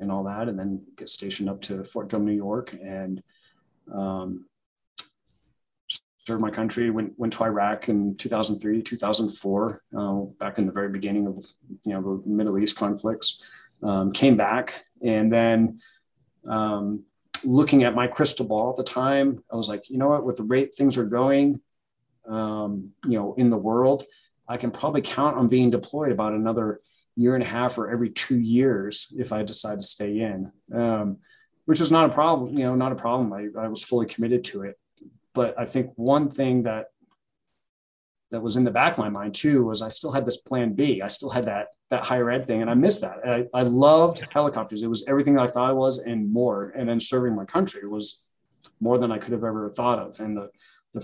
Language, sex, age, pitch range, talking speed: English, male, 30-49, 105-125 Hz, 205 wpm